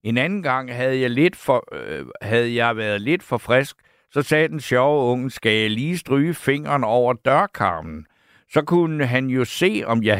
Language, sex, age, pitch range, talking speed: Danish, male, 60-79, 110-155 Hz, 195 wpm